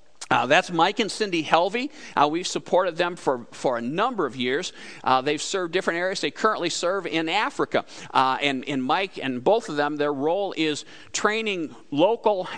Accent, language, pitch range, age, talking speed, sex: American, English, 145-205 Hz, 50-69, 185 wpm, male